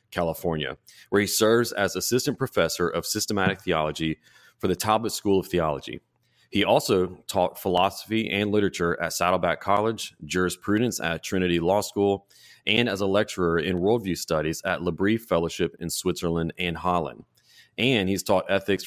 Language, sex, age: English, male, 30-49